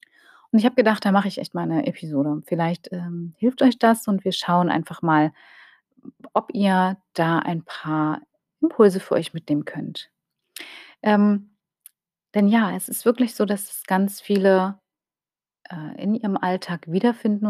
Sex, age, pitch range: female, 30-49, 175-225 Hz